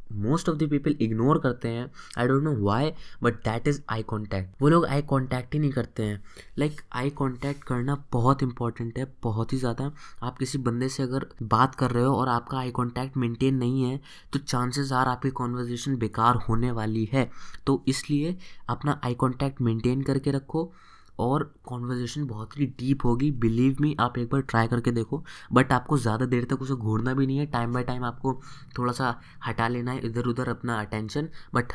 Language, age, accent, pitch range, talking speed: Hindi, 20-39, native, 115-140 Hz, 200 wpm